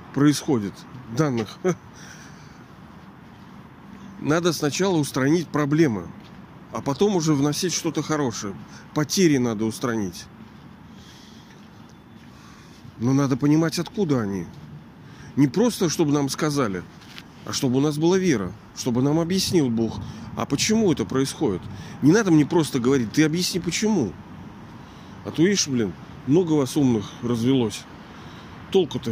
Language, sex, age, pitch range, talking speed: Russian, male, 40-59, 120-160 Hz, 115 wpm